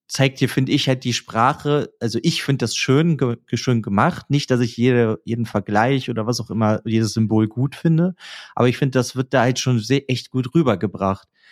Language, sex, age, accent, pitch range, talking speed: German, male, 30-49, German, 110-130 Hz, 215 wpm